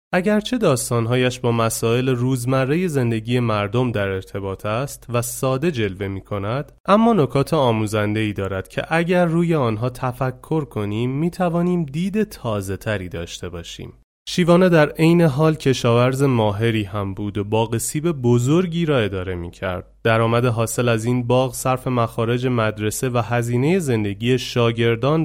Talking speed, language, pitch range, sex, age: 135 wpm, Persian, 110-155 Hz, male, 30-49